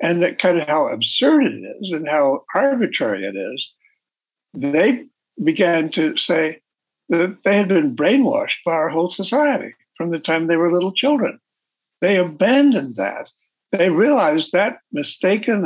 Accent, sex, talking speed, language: American, male, 150 wpm, English